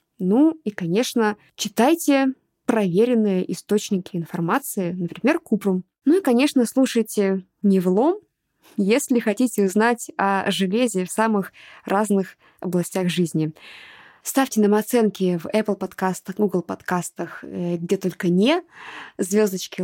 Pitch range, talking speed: 185-235 Hz, 110 wpm